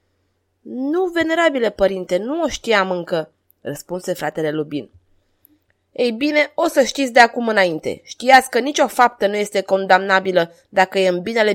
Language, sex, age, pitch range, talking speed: Romanian, female, 20-39, 160-260 Hz, 150 wpm